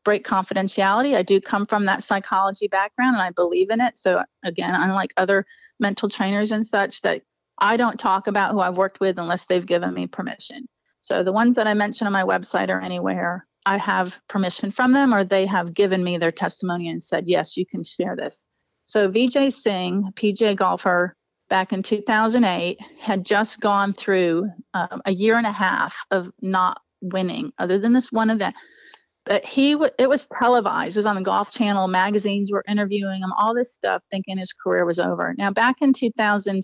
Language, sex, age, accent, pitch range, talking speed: English, female, 40-59, American, 185-220 Hz, 200 wpm